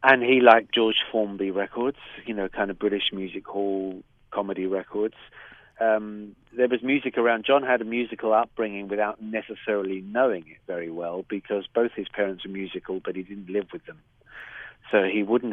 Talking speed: 180 wpm